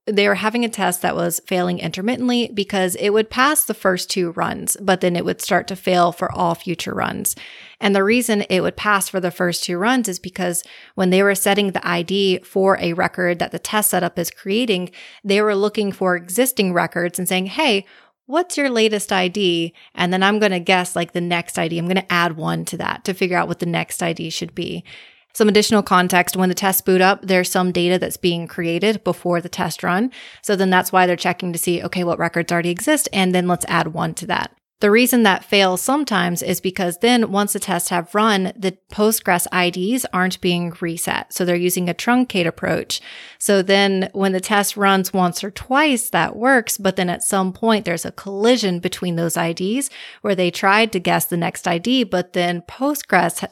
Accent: American